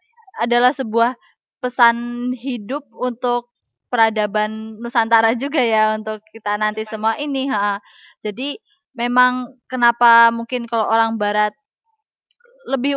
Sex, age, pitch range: female, 20-39, 215-255 Hz